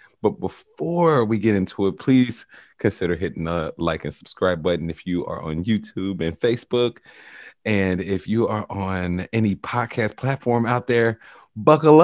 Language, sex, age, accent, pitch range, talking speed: English, male, 30-49, American, 90-115 Hz, 160 wpm